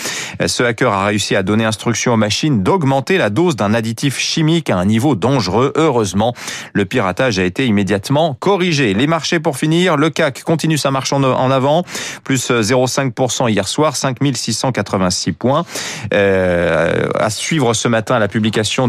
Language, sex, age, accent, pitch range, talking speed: French, male, 30-49, French, 115-155 Hz, 160 wpm